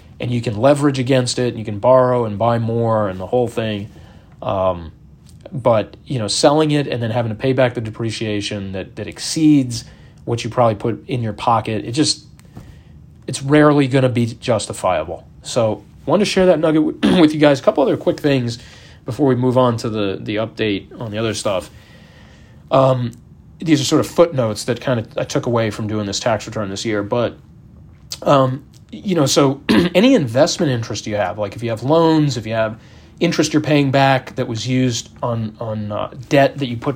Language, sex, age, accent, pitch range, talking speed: English, male, 30-49, American, 110-140 Hz, 210 wpm